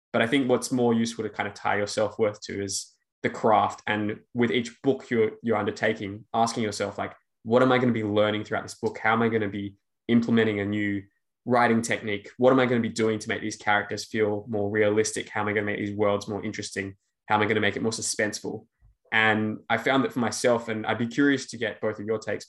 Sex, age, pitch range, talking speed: male, 10-29, 105-120 Hz, 255 wpm